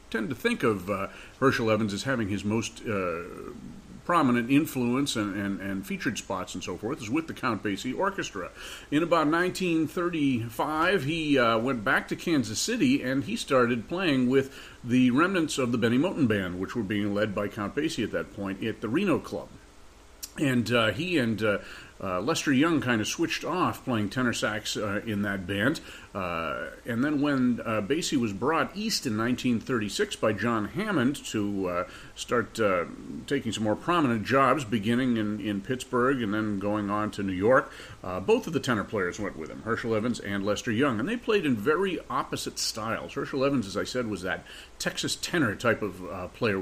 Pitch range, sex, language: 105-135 Hz, male, English